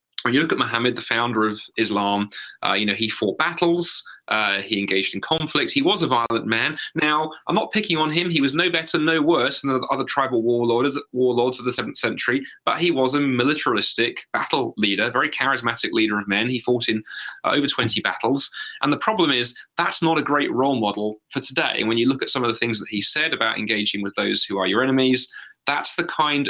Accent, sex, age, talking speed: British, male, 30-49, 225 wpm